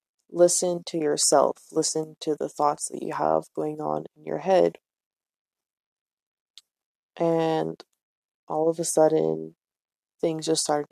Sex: female